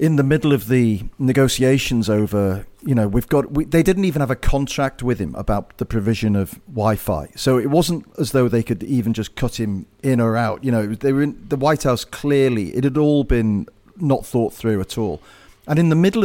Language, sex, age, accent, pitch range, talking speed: English, male, 40-59, British, 110-155 Hz, 225 wpm